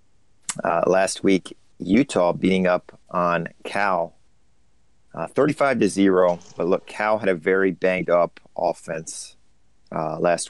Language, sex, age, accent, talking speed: English, male, 40-59, American, 130 wpm